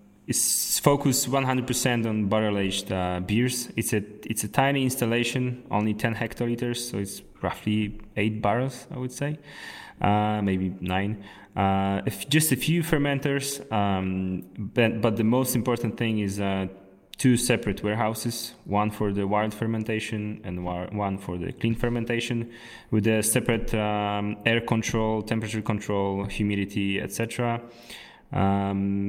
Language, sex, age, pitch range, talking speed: English, male, 20-39, 100-120 Hz, 135 wpm